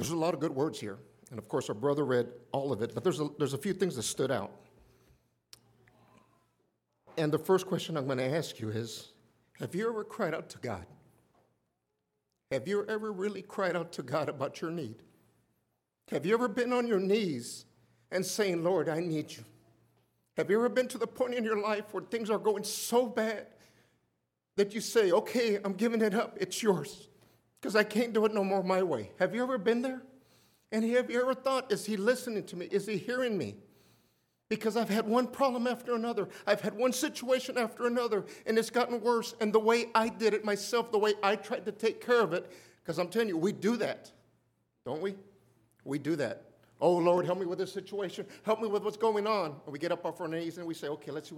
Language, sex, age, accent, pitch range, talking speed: English, male, 50-69, American, 165-225 Hz, 225 wpm